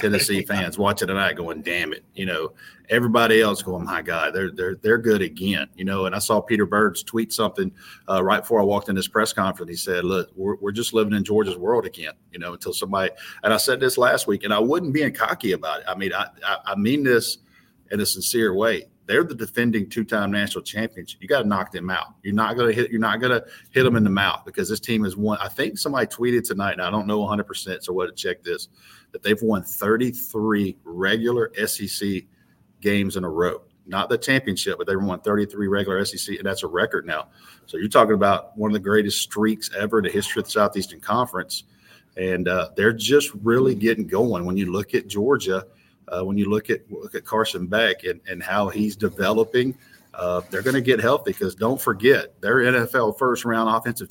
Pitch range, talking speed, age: 100-120 Hz, 225 wpm, 40-59